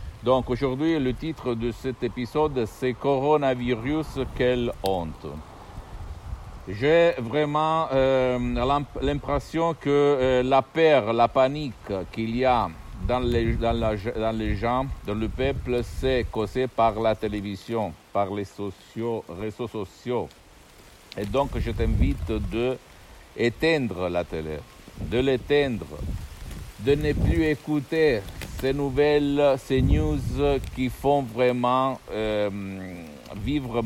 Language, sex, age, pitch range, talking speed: Italian, male, 60-79, 100-130 Hz, 120 wpm